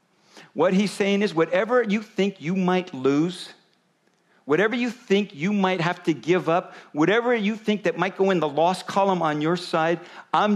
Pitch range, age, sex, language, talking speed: 160-205 Hz, 50-69, male, English, 190 wpm